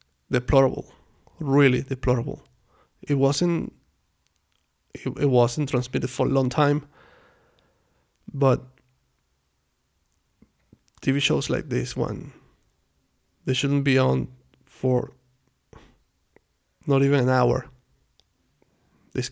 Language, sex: English, male